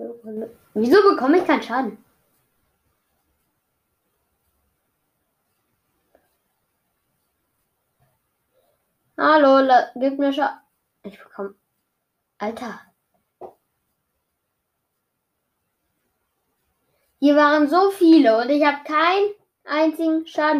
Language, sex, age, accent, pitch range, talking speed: German, female, 10-29, German, 235-330 Hz, 65 wpm